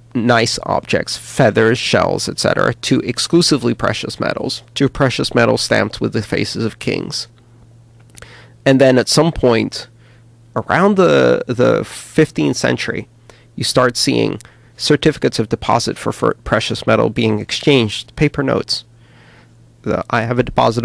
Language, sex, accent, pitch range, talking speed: English, male, American, 120-150 Hz, 135 wpm